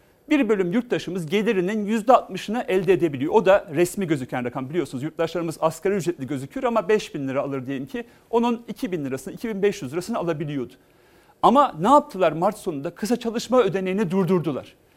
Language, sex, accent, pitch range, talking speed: Turkish, male, native, 140-215 Hz, 170 wpm